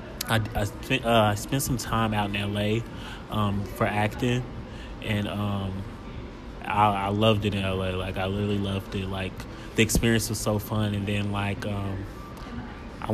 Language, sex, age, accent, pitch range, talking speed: English, male, 20-39, American, 100-110 Hz, 160 wpm